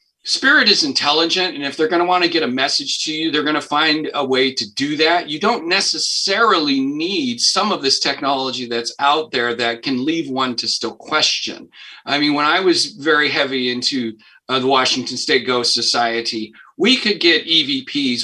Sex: male